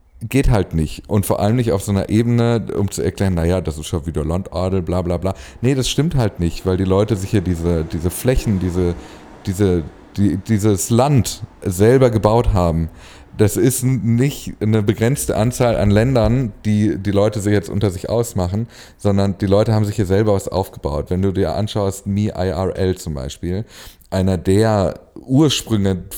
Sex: male